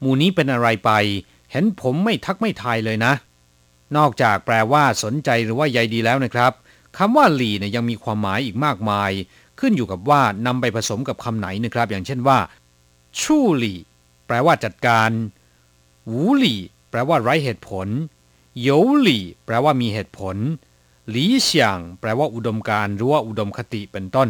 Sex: male